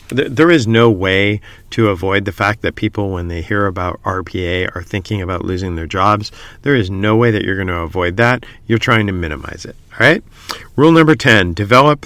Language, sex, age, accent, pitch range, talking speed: English, male, 50-69, American, 95-115 Hz, 210 wpm